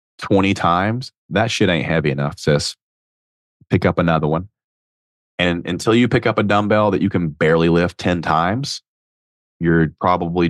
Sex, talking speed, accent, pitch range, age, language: male, 160 wpm, American, 80-105 Hz, 30-49, English